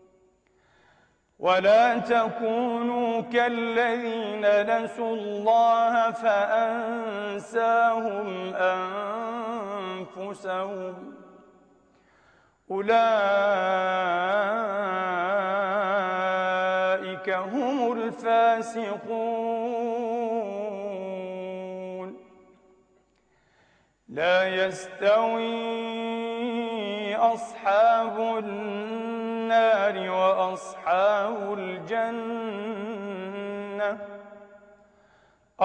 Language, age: English, 40-59